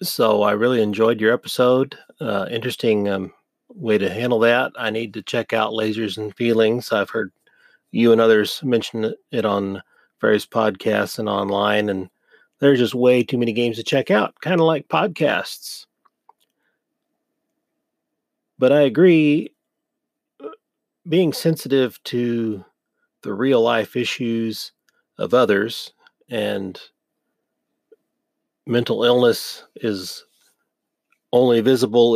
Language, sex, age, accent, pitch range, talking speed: English, male, 40-59, American, 110-140 Hz, 120 wpm